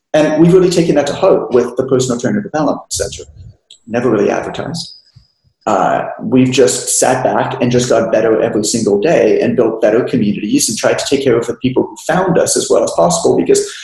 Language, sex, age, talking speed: English, male, 30-49, 210 wpm